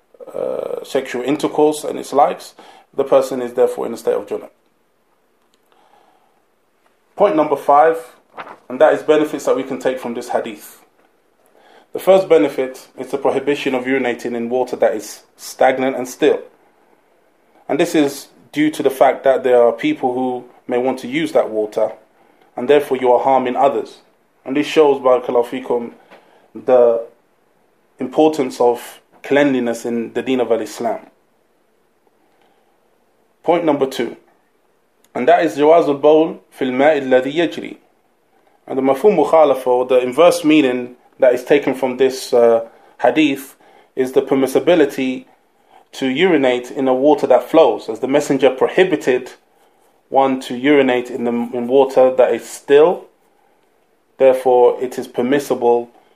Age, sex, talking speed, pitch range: 20-39, male, 145 wpm, 125-170 Hz